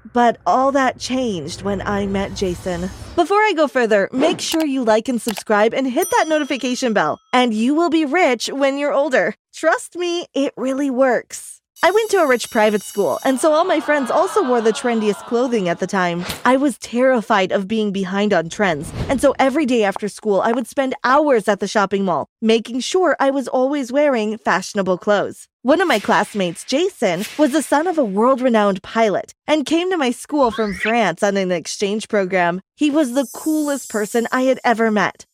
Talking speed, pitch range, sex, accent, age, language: 200 wpm, 210-290 Hz, female, American, 20-39, English